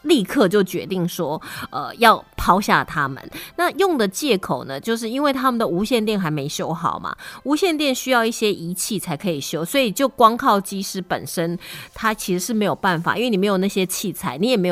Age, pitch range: 30-49, 180-245 Hz